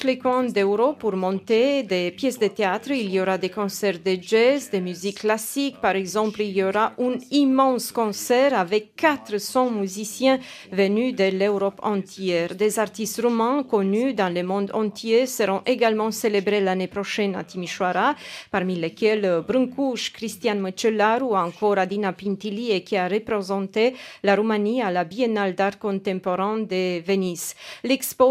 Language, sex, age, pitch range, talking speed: French, female, 40-59, 195-245 Hz, 150 wpm